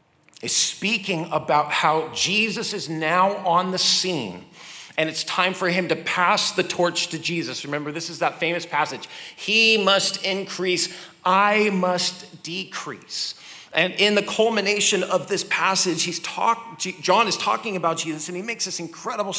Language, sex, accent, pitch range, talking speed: English, male, American, 155-195 Hz, 160 wpm